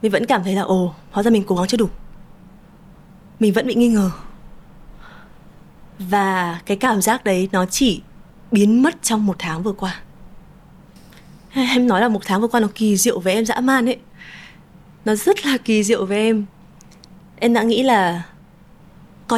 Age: 20-39